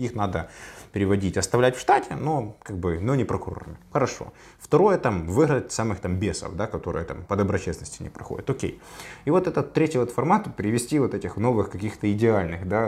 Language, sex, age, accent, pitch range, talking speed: Ukrainian, male, 20-39, native, 90-115 Hz, 185 wpm